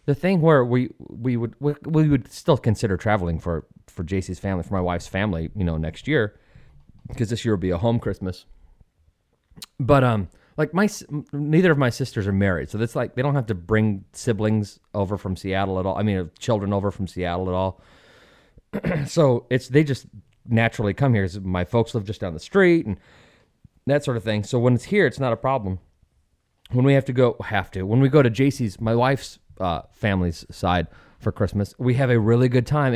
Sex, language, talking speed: male, English, 215 wpm